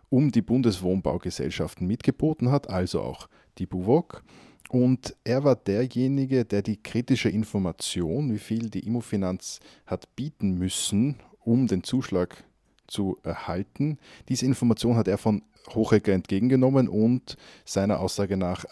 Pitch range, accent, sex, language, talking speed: 90-115 Hz, Austrian, male, German, 130 wpm